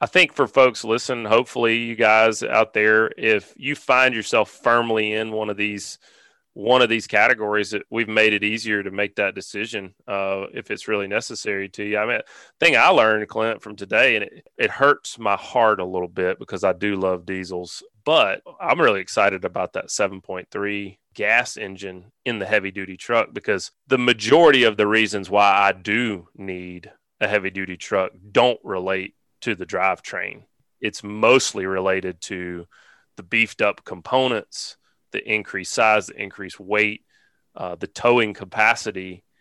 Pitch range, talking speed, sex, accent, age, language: 95-110 Hz, 175 wpm, male, American, 30-49, English